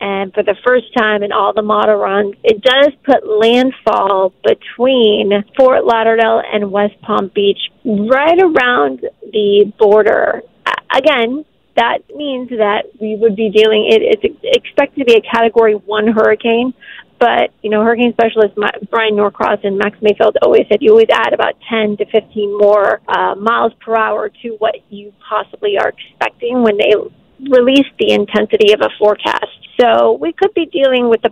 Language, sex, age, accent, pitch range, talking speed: English, female, 30-49, American, 215-265 Hz, 165 wpm